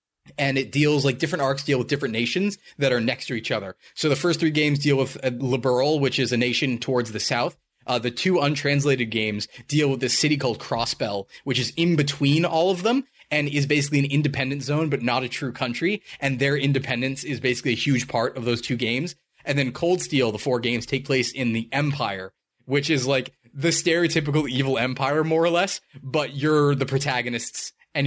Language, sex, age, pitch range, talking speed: English, male, 20-39, 125-150 Hz, 215 wpm